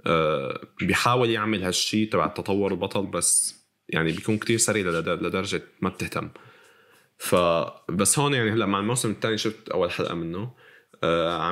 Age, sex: 20-39, male